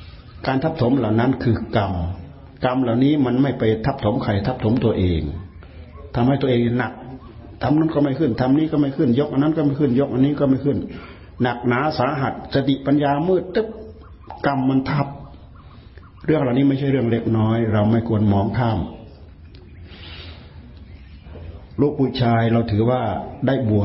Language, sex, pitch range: Thai, male, 95-135 Hz